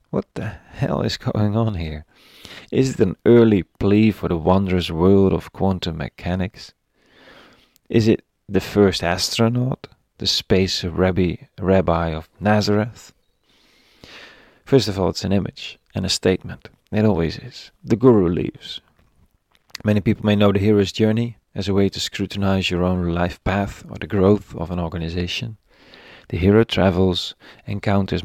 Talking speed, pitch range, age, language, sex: 150 wpm, 90-110 Hz, 40-59, English, male